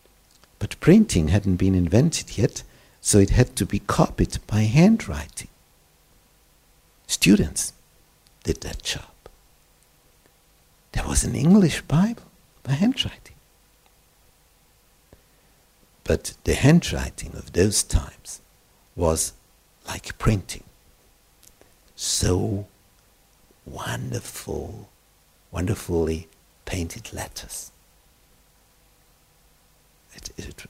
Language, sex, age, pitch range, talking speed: Romanian, male, 60-79, 95-140 Hz, 80 wpm